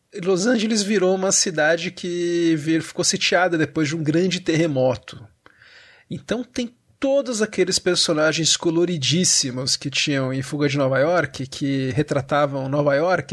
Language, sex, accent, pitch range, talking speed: Portuguese, male, Brazilian, 145-180 Hz, 135 wpm